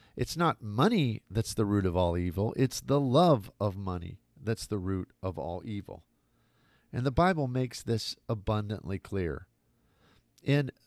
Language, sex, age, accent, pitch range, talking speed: English, male, 50-69, American, 100-130 Hz, 155 wpm